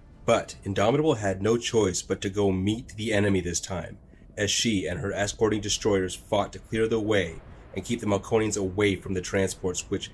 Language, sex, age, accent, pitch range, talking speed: English, male, 30-49, American, 90-105 Hz, 195 wpm